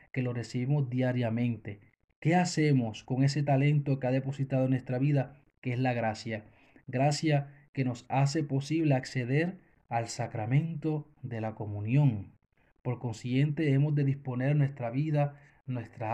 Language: Spanish